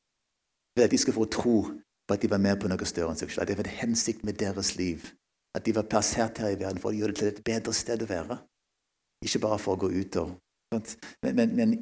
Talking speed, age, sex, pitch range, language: 230 wpm, 50-69, male, 100-125 Hz, English